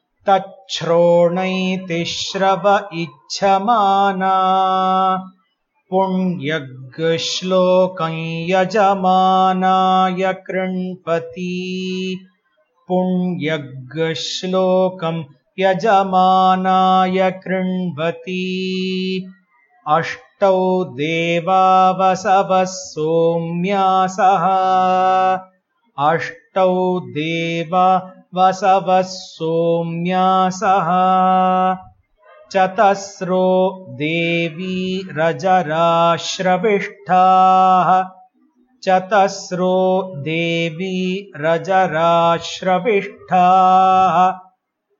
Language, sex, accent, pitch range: Hindi, male, native, 180-190 Hz